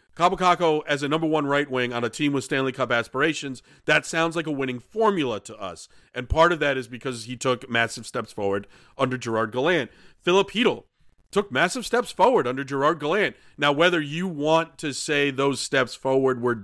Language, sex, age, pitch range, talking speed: English, male, 40-59, 125-165 Hz, 200 wpm